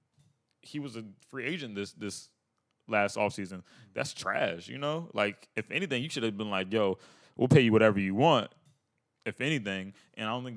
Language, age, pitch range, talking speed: English, 20-39, 95-115 Hz, 195 wpm